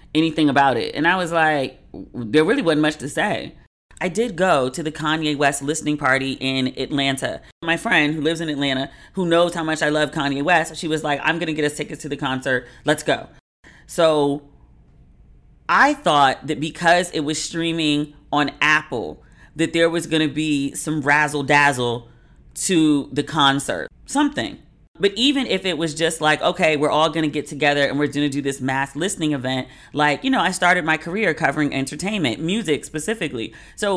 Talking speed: 195 wpm